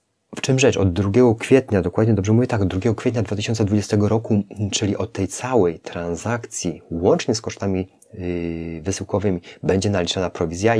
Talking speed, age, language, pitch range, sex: 150 wpm, 30-49, Polish, 90-105 Hz, male